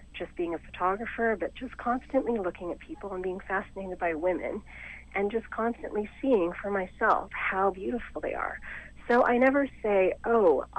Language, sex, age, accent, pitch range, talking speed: English, female, 40-59, American, 185-240 Hz, 165 wpm